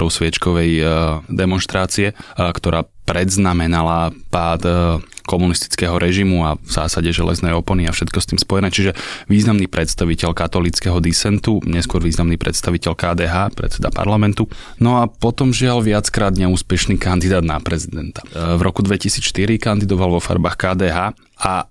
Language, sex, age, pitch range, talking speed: Slovak, male, 20-39, 85-100 Hz, 125 wpm